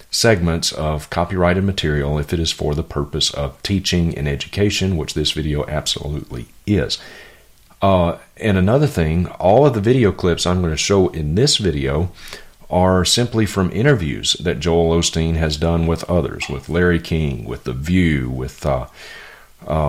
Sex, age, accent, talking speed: male, 40-59, American, 165 wpm